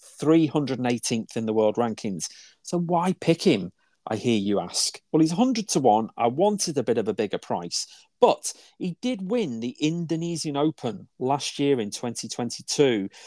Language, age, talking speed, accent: English, 40-59, 165 wpm, British